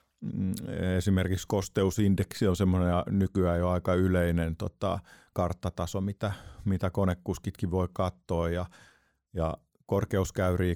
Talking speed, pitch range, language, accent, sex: 100 wpm, 90-100 Hz, Finnish, native, male